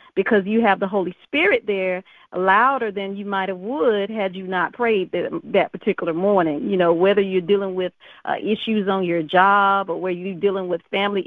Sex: female